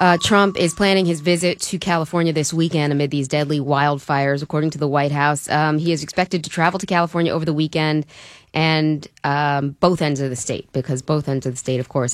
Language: English